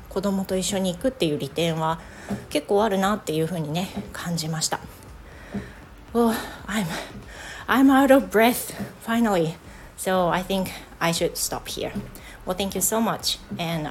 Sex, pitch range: female, 165-220 Hz